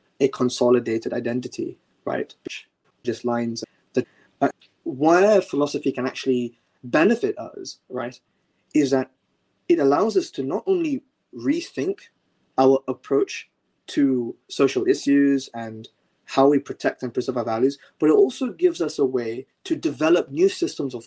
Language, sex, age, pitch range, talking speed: English, male, 20-39, 120-145 Hz, 140 wpm